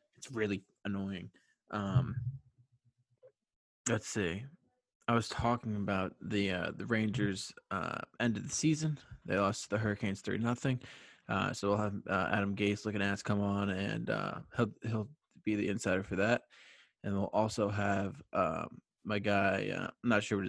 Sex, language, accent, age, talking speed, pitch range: male, English, American, 20-39, 170 wpm, 100-115 Hz